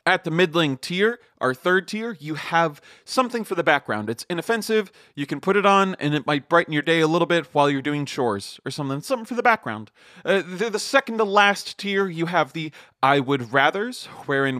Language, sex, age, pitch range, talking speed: English, male, 30-49, 145-210 Hz, 220 wpm